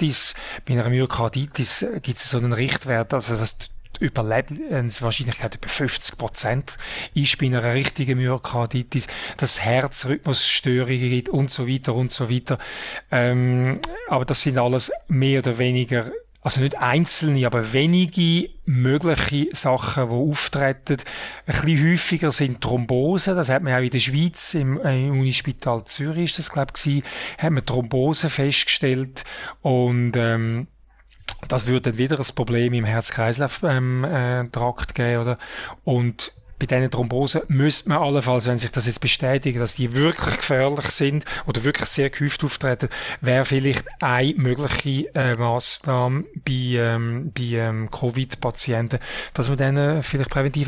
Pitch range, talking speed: 120-140 Hz, 145 wpm